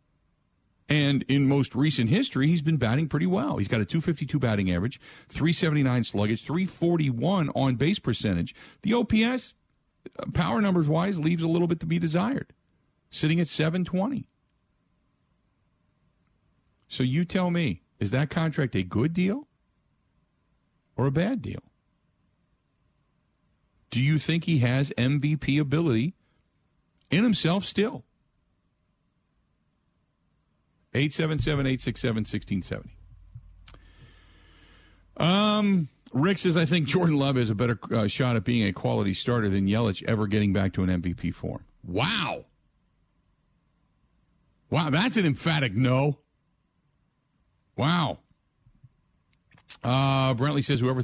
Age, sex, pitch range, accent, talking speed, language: 50-69, male, 110-165 Hz, American, 115 wpm, English